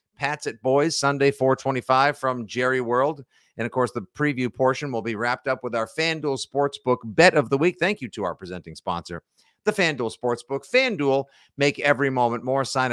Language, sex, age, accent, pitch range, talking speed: English, male, 50-69, American, 115-160 Hz, 190 wpm